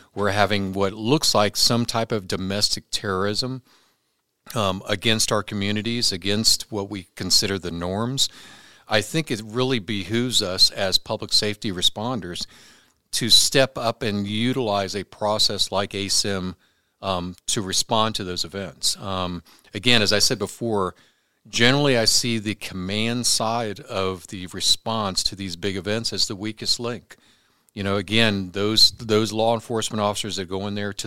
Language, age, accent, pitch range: English, 50-69, American, 95-115 Hz